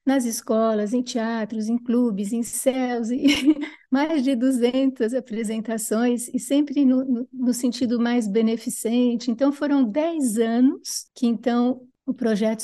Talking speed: 130 wpm